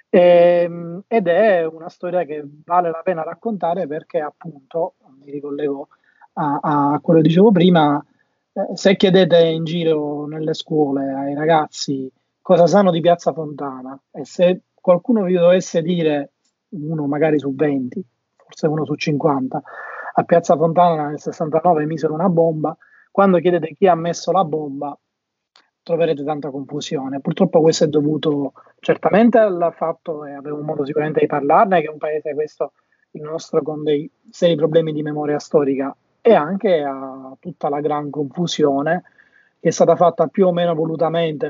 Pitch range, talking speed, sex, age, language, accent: 150-175 Hz, 155 wpm, male, 20-39, Italian, native